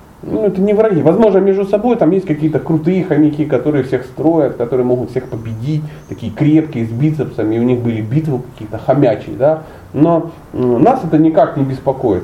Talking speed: 180 wpm